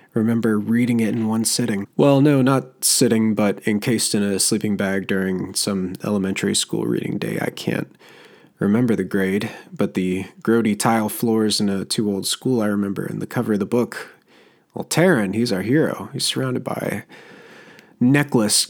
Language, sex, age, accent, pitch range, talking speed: English, male, 20-39, American, 105-125 Hz, 170 wpm